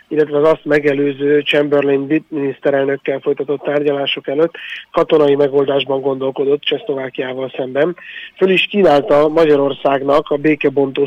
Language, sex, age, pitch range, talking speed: Hungarian, male, 30-49, 140-150 Hz, 110 wpm